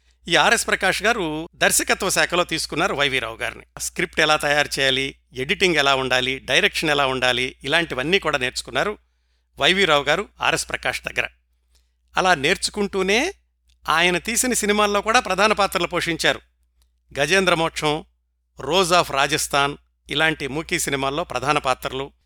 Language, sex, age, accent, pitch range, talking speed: Telugu, male, 50-69, native, 125-180 Hz, 125 wpm